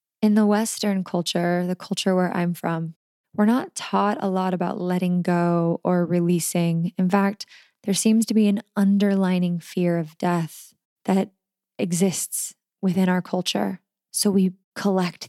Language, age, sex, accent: English, 20-39, female, American